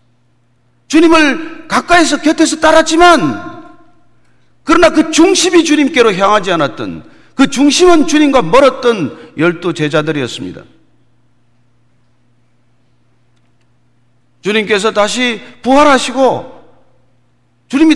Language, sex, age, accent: Korean, male, 40-59, native